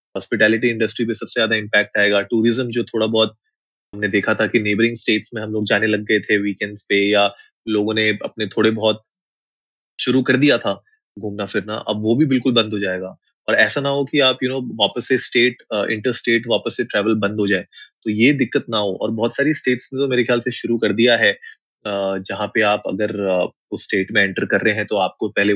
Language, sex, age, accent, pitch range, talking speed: Hindi, male, 20-39, native, 105-125 Hz, 180 wpm